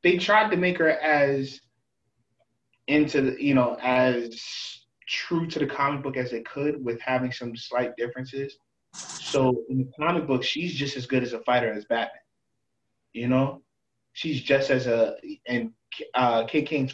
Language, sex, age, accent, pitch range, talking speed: English, male, 20-39, American, 120-145 Hz, 165 wpm